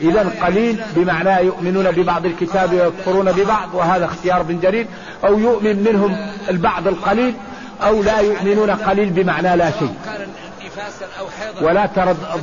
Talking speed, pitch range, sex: 125 wpm, 180-210 Hz, male